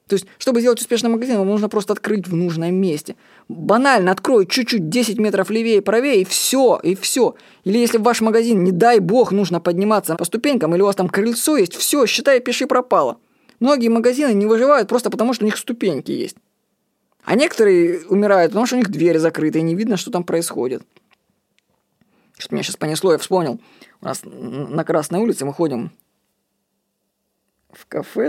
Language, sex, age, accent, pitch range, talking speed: Russian, female, 20-39, native, 185-245 Hz, 185 wpm